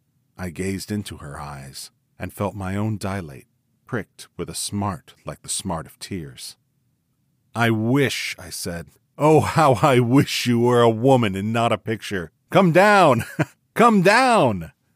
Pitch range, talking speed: 100-125 Hz, 155 wpm